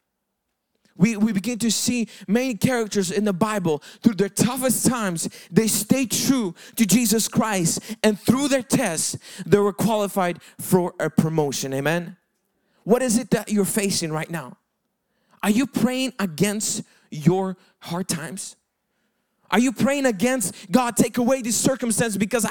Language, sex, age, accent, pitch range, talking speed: English, male, 20-39, American, 180-245 Hz, 150 wpm